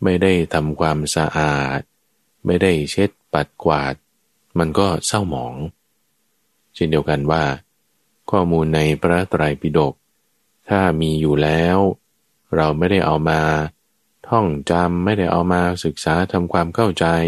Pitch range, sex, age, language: 75-90 Hz, male, 20-39, Thai